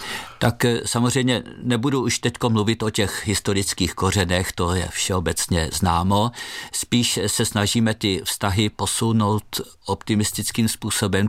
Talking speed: 115 wpm